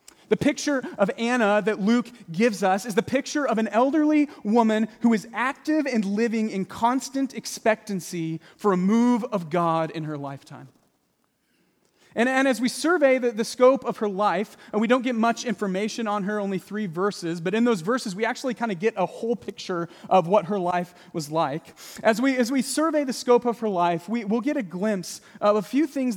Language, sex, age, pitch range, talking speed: English, male, 30-49, 175-235 Hz, 200 wpm